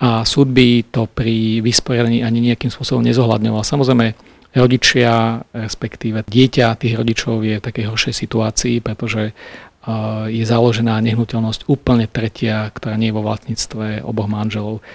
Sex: male